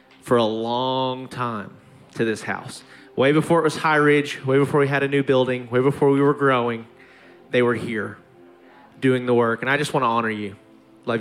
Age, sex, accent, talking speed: 30-49, male, American, 205 wpm